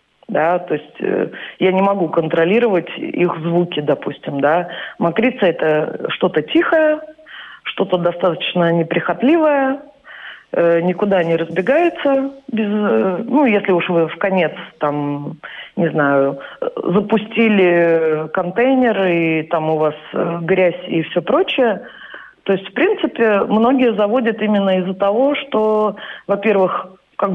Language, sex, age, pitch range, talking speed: Russian, female, 30-49, 175-230 Hz, 125 wpm